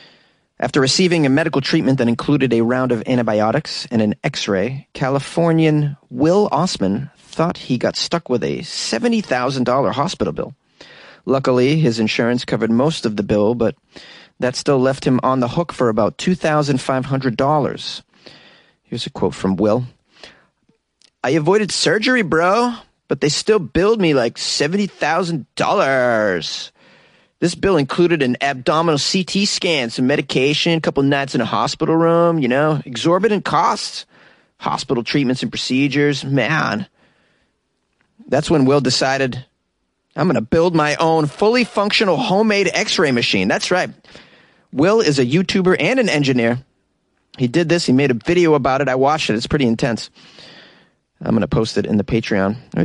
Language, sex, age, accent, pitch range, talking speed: English, male, 30-49, American, 125-170 Hz, 155 wpm